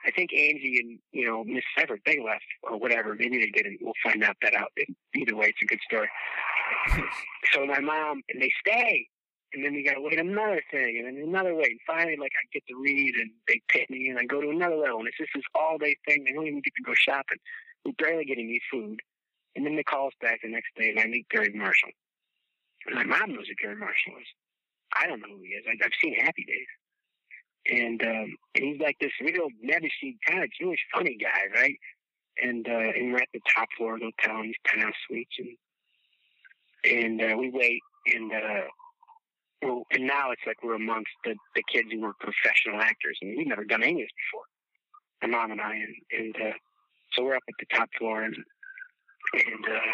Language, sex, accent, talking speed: English, male, American, 230 wpm